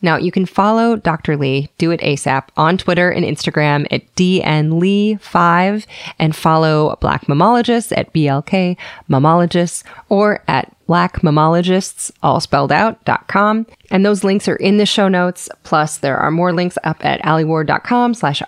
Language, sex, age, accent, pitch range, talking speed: English, female, 30-49, American, 150-195 Hz, 155 wpm